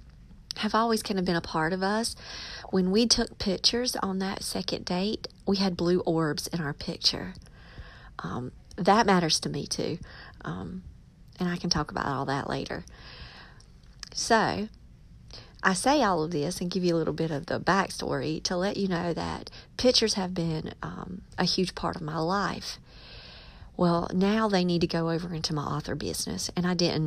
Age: 40-59